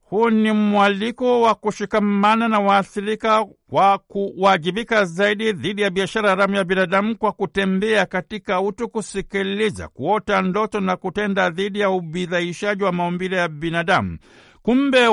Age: 60-79